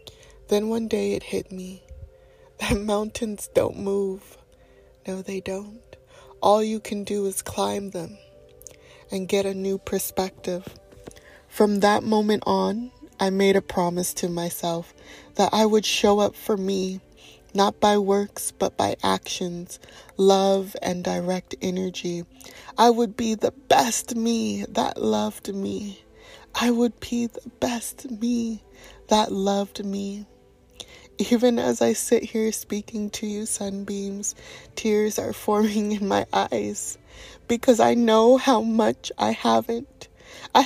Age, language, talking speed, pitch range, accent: 20-39, English, 135 wpm, 190-220 Hz, American